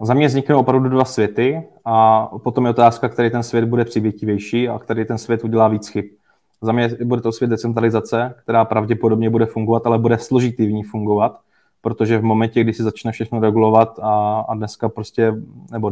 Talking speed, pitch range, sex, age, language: 190 wpm, 110-115 Hz, male, 20-39, Czech